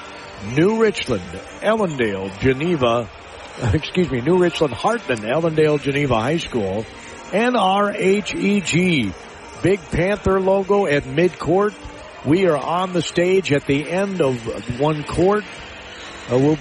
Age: 50-69